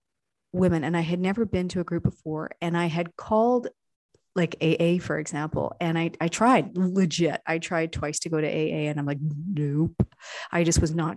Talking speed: 205 wpm